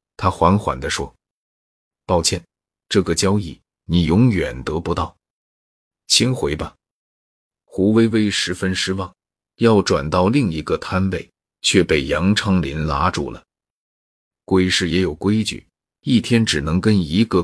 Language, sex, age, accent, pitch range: Chinese, male, 30-49, native, 80-105 Hz